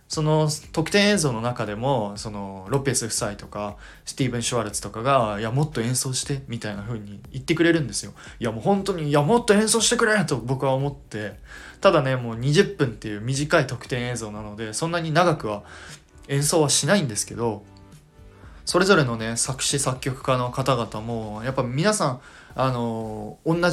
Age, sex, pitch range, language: 20-39, male, 115-155 Hz, Japanese